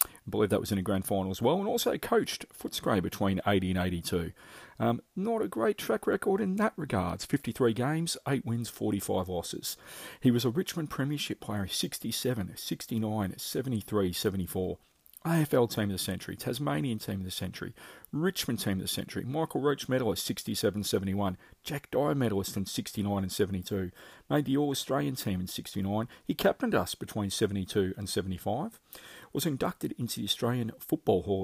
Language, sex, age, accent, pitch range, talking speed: English, male, 40-59, Australian, 95-120 Hz, 170 wpm